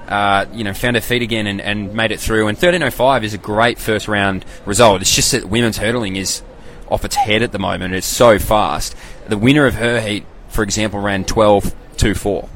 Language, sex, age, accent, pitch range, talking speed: English, male, 20-39, Australian, 100-115 Hz, 225 wpm